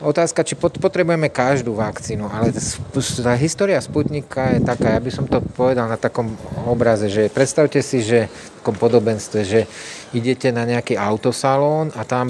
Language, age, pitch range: Slovak, 40-59, 110-140 Hz